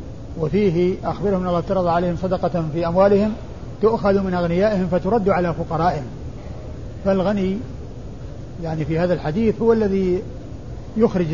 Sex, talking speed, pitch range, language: male, 120 wpm, 160-190 Hz, Arabic